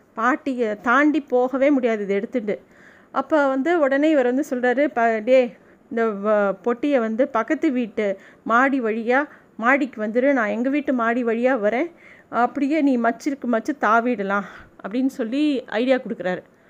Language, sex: Tamil, female